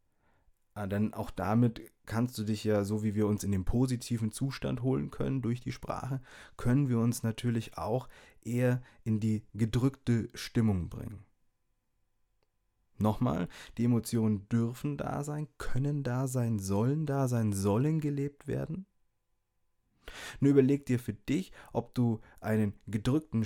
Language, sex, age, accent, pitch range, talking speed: German, male, 20-39, German, 105-125 Hz, 145 wpm